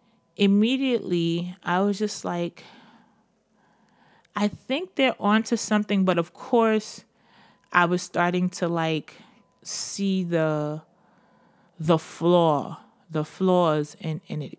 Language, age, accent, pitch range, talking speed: English, 30-49, American, 165-210 Hz, 110 wpm